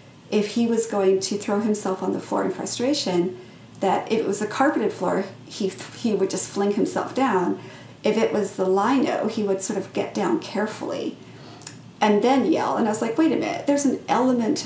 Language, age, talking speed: English, 40-59, 210 wpm